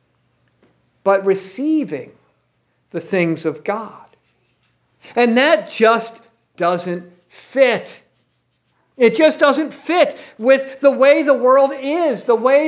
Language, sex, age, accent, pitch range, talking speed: English, male, 50-69, American, 195-260 Hz, 110 wpm